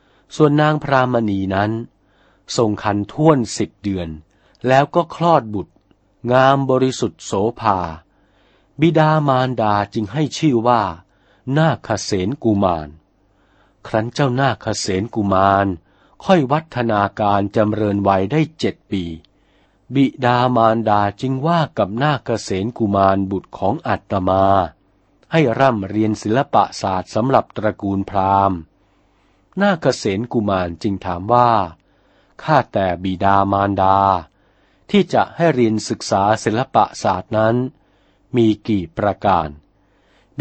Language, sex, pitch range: Thai, male, 95-130 Hz